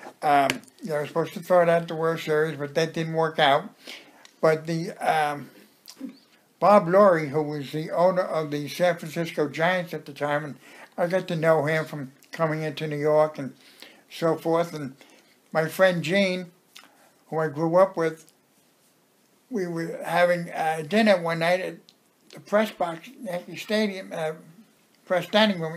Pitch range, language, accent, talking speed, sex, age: 155-185 Hz, English, American, 175 wpm, male, 60-79